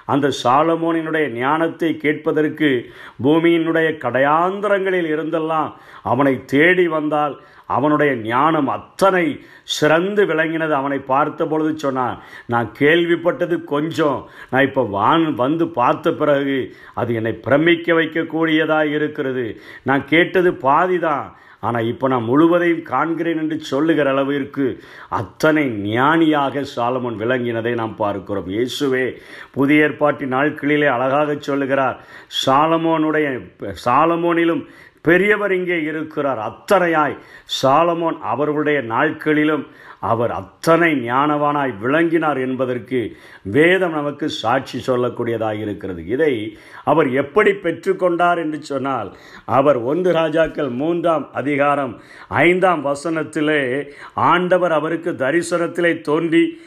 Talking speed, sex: 95 wpm, male